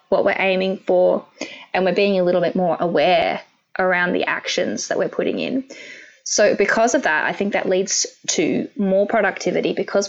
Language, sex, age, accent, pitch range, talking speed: English, female, 10-29, Australian, 190-245 Hz, 185 wpm